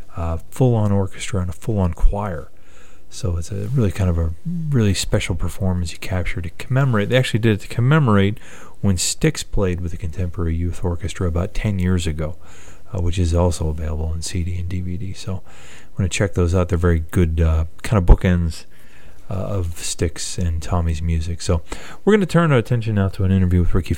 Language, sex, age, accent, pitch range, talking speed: English, male, 30-49, American, 85-100 Hz, 205 wpm